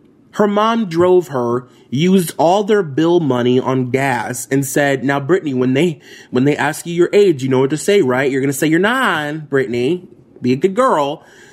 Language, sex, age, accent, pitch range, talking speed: English, male, 20-39, American, 120-160 Hz, 205 wpm